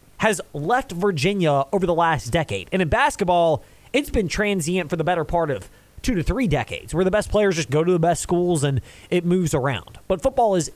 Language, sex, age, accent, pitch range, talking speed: English, male, 30-49, American, 140-220 Hz, 220 wpm